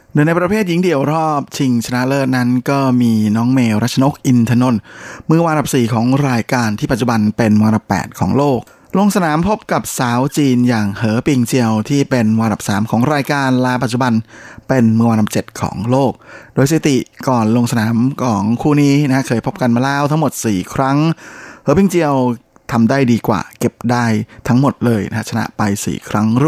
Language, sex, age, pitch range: Thai, male, 20-39, 110-135 Hz